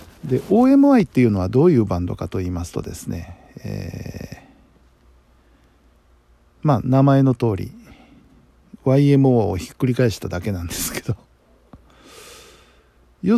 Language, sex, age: Japanese, male, 50-69